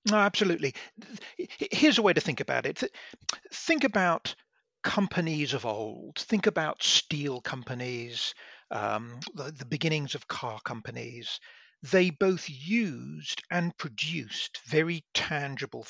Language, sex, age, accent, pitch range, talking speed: English, male, 50-69, British, 140-200 Hz, 120 wpm